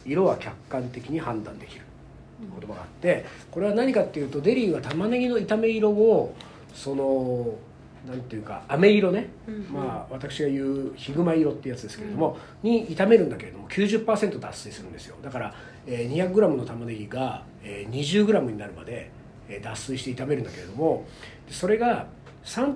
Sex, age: male, 40-59